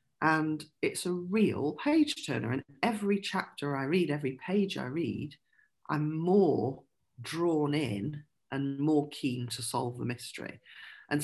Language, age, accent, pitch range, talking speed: English, 40-59, British, 130-155 Hz, 145 wpm